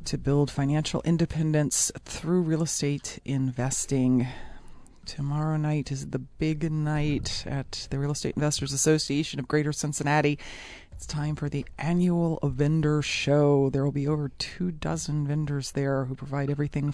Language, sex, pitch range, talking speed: English, female, 140-165 Hz, 145 wpm